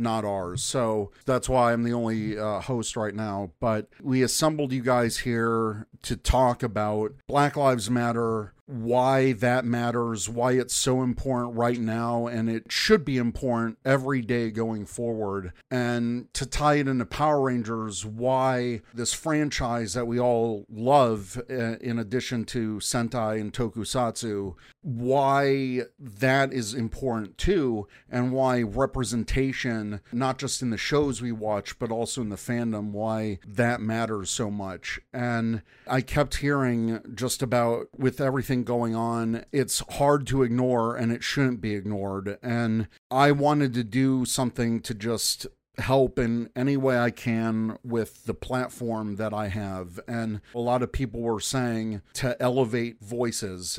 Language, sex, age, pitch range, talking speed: English, male, 50-69, 110-130 Hz, 150 wpm